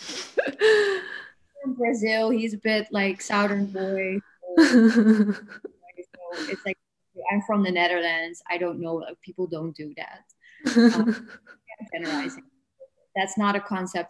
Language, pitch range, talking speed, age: English, 185-235 Hz, 120 wpm, 20-39